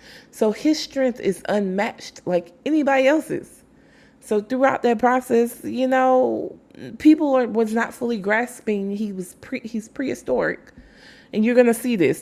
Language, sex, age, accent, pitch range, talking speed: English, female, 20-39, American, 185-260 Hz, 150 wpm